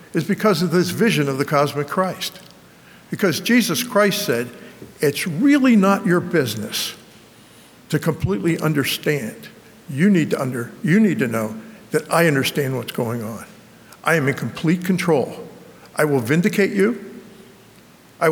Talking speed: 145 wpm